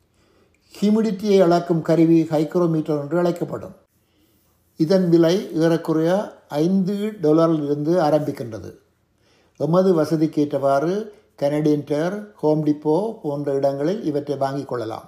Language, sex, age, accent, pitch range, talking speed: Tamil, male, 60-79, native, 140-175 Hz, 90 wpm